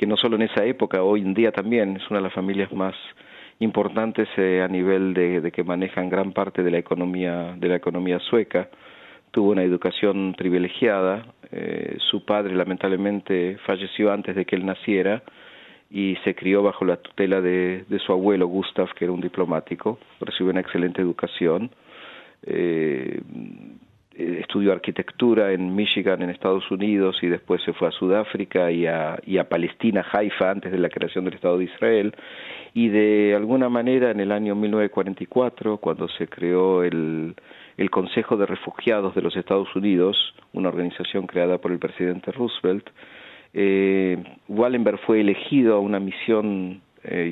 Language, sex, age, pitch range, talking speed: Spanish, male, 40-59, 90-105 Hz, 160 wpm